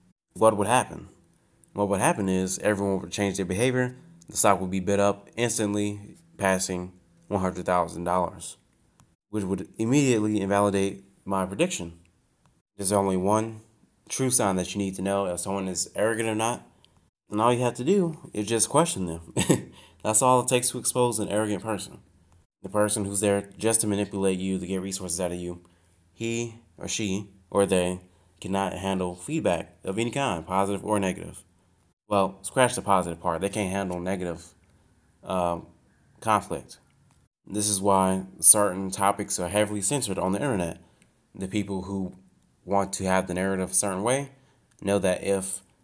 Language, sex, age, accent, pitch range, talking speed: English, male, 20-39, American, 95-105 Hz, 165 wpm